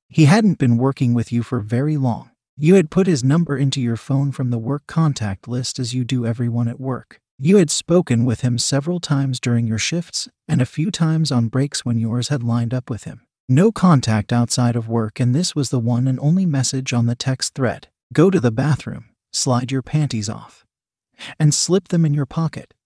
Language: English